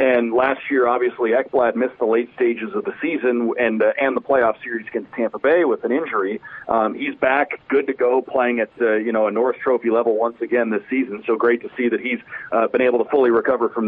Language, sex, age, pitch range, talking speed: English, male, 40-59, 115-145 Hz, 240 wpm